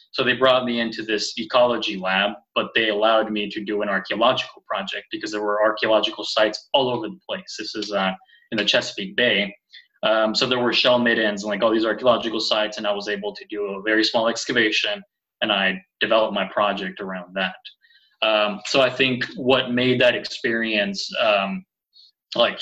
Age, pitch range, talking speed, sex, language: 20-39, 105-125 Hz, 190 wpm, male, English